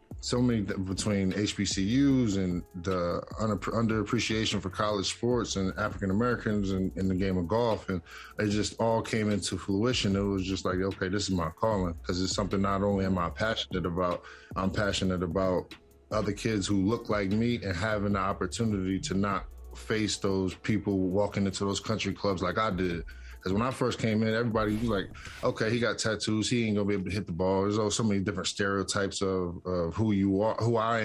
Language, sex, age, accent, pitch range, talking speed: English, male, 20-39, American, 95-110 Hz, 200 wpm